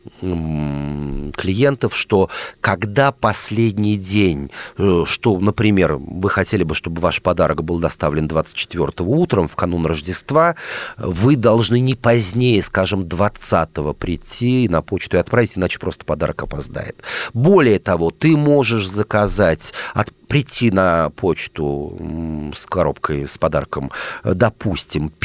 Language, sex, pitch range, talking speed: Russian, male, 85-115 Hz, 115 wpm